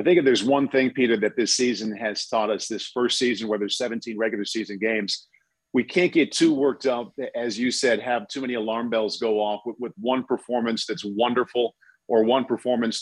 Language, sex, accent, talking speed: English, male, American, 215 wpm